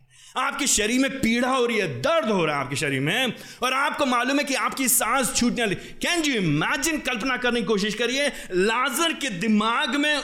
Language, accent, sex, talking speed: Hindi, native, male, 205 wpm